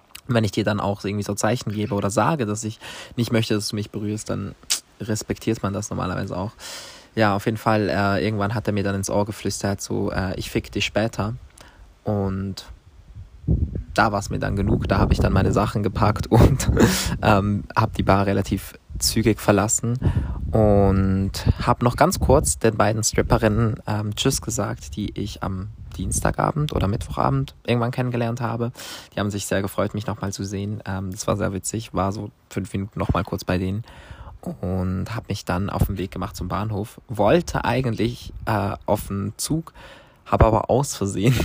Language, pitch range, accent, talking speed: German, 95-115 Hz, German, 180 wpm